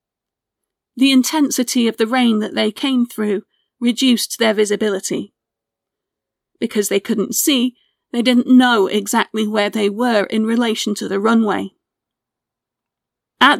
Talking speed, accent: 130 wpm, British